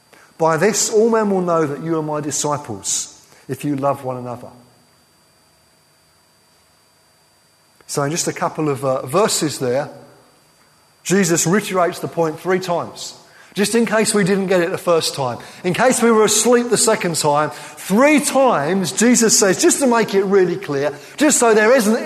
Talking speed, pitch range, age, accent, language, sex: 170 wpm, 140-200 Hz, 30-49, British, English, male